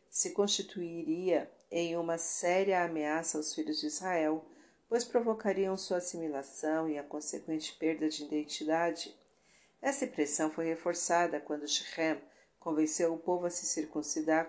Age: 50-69